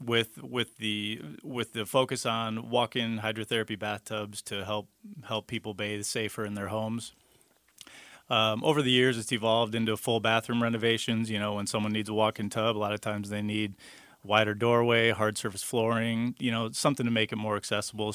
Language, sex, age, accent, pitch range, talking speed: English, male, 30-49, American, 105-120 Hz, 185 wpm